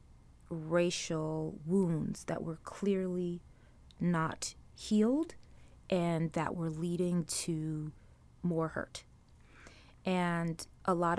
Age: 20-39